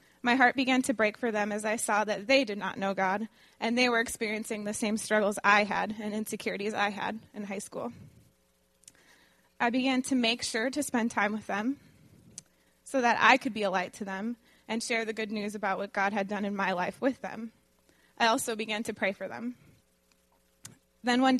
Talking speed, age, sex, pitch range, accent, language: 210 wpm, 20-39, female, 205-240 Hz, American, English